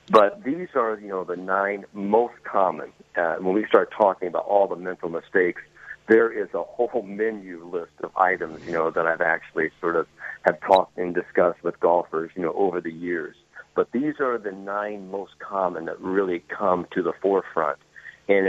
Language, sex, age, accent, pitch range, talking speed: English, male, 50-69, American, 85-105 Hz, 190 wpm